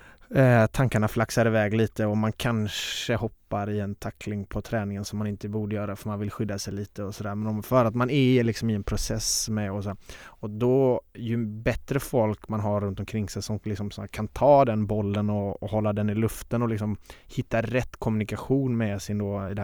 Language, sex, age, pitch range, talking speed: Swedish, male, 20-39, 105-115 Hz, 225 wpm